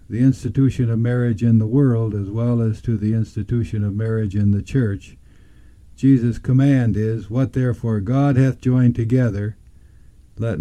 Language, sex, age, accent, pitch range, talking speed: English, male, 60-79, American, 100-125 Hz, 160 wpm